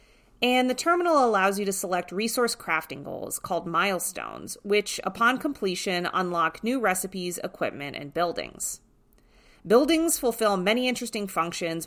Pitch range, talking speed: 165-225 Hz, 130 wpm